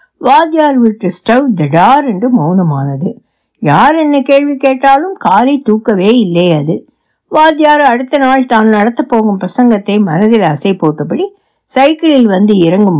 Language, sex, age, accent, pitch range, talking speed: Tamil, female, 60-79, native, 185-255 Hz, 70 wpm